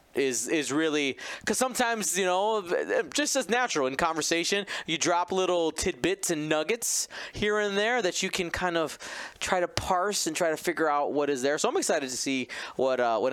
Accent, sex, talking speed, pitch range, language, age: American, male, 205 wpm, 135-205 Hz, English, 20-39